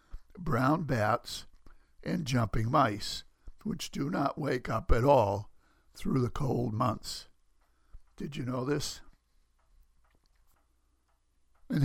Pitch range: 105-145 Hz